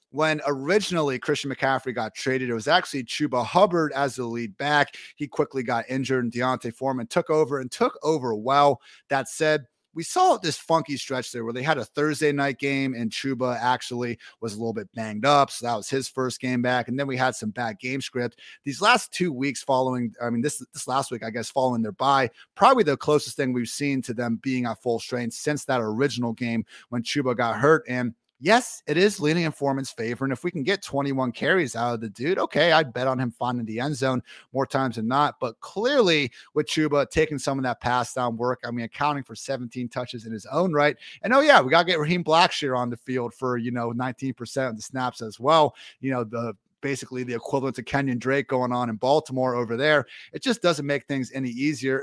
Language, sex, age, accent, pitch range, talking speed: English, male, 30-49, American, 120-145 Hz, 230 wpm